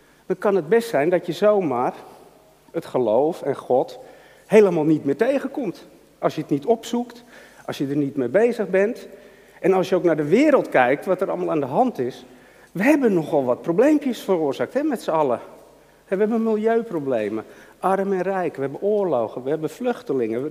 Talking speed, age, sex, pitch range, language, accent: 185 wpm, 50-69, male, 165-225 Hz, Dutch, Dutch